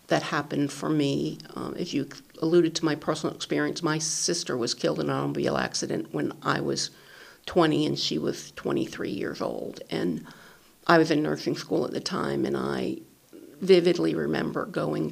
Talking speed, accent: 175 wpm, American